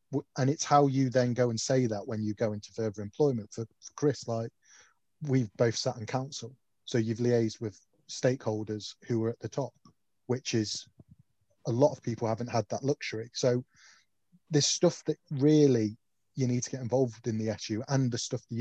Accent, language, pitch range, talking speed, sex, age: British, English, 110-130 Hz, 195 wpm, male, 30-49